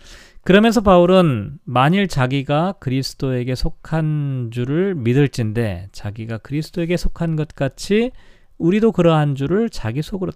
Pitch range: 125-185 Hz